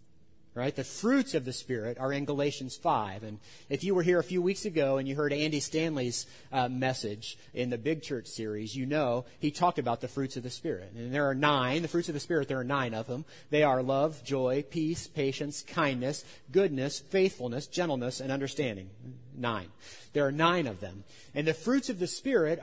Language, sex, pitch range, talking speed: English, male, 130-170 Hz, 210 wpm